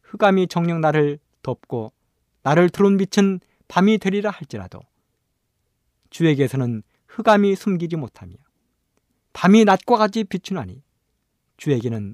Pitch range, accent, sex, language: 110-175 Hz, native, male, Korean